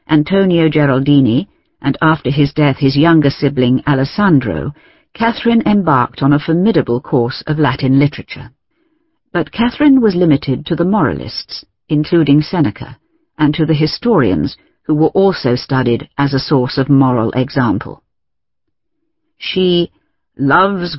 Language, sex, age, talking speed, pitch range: English, female, 50-69, 125 wpm, 140-185 Hz